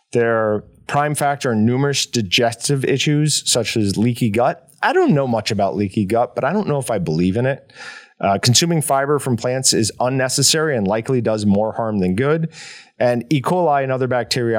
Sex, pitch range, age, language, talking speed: male, 110-145 Hz, 30-49, English, 195 wpm